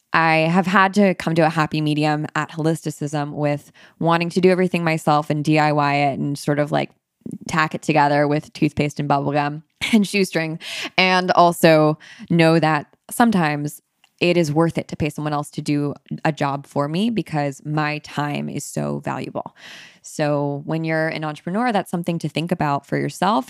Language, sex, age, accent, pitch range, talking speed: English, female, 20-39, American, 150-185 Hz, 180 wpm